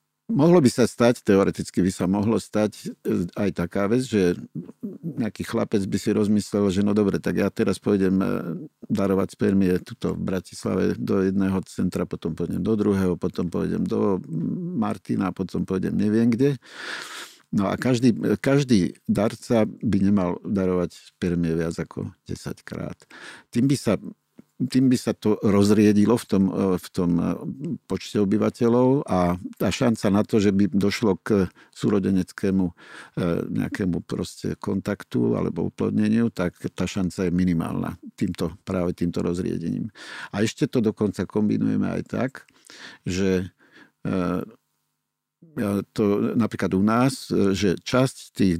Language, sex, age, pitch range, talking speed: Slovak, male, 50-69, 95-115 Hz, 135 wpm